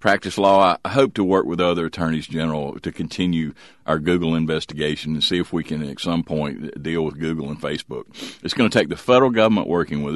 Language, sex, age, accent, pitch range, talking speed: English, male, 50-69, American, 80-105 Hz, 220 wpm